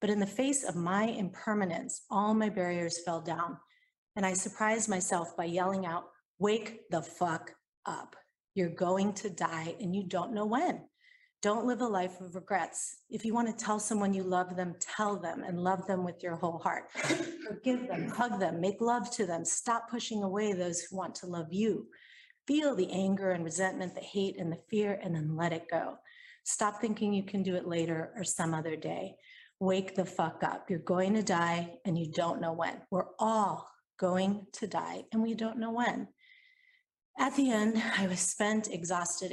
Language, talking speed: English, 195 wpm